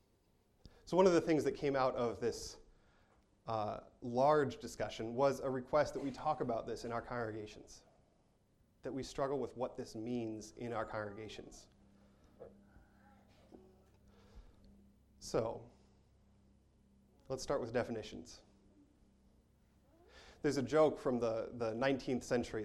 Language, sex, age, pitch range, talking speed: English, male, 30-49, 110-150 Hz, 125 wpm